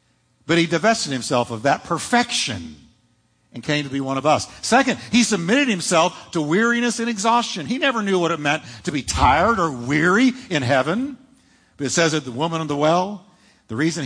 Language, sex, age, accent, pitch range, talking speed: English, male, 50-69, American, 150-215 Hz, 195 wpm